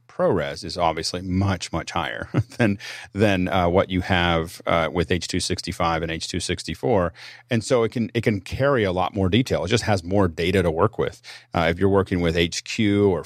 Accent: American